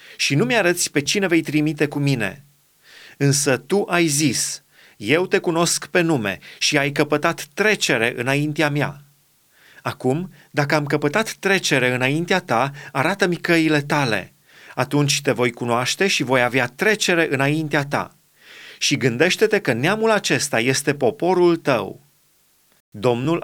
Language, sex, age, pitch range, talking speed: Romanian, male, 30-49, 140-175 Hz, 135 wpm